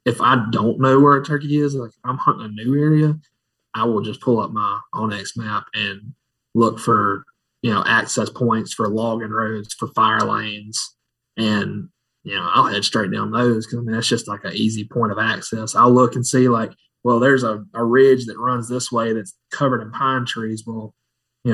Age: 20-39